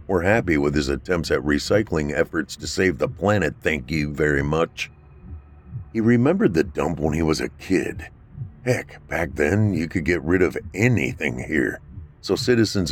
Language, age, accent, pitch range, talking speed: English, 50-69, American, 80-100 Hz, 170 wpm